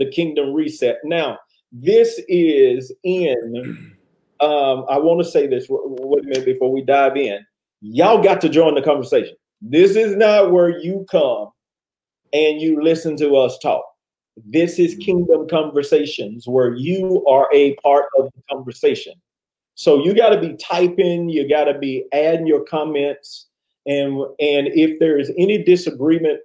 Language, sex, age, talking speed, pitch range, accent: English, male, 40-59, 160 wpm, 135-190 Hz, American